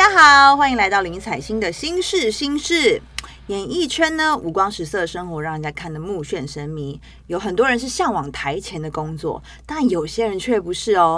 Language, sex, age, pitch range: Chinese, female, 20-39, 165-265 Hz